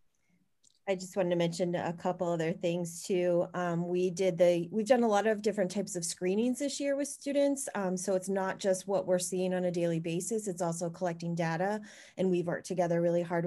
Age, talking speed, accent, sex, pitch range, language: 30-49, 220 wpm, American, female, 165-185 Hz, English